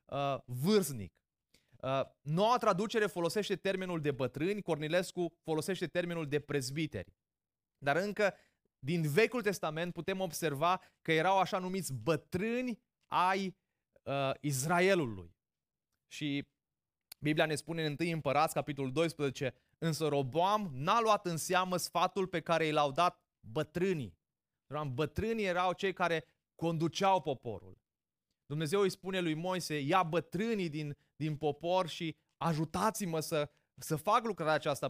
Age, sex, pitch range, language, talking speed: 30-49, male, 145-190 Hz, Romanian, 120 wpm